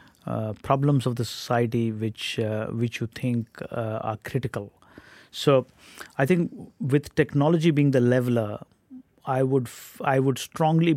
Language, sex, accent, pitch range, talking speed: English, male, Indian, 115-135 Hz, 150 wpm